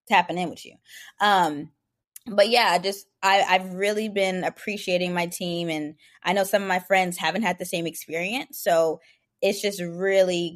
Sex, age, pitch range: female, 20-39, 175-210 Hz